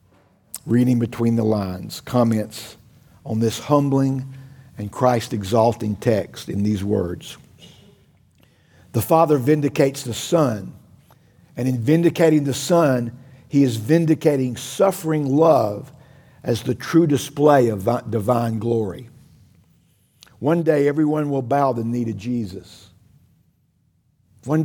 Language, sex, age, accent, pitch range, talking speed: English, male, 50-69, American, 110-150 Hz, 115 wpm